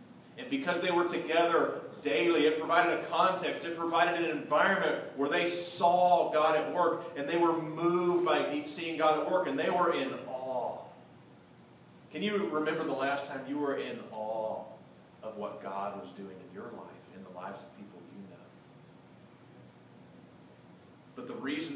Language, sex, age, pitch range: English, male, 40-59, 135-175 Hz